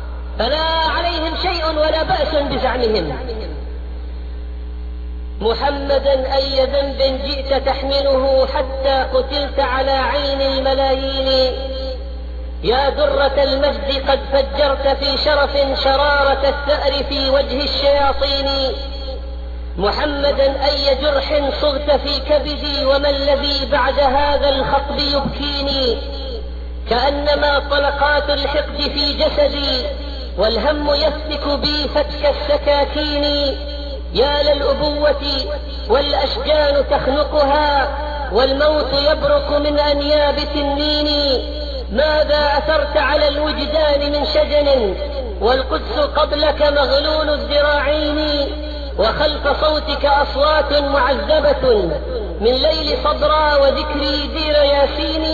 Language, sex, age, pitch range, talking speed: Arabic, female, 40-59, 275-295 Hz, 85 wpm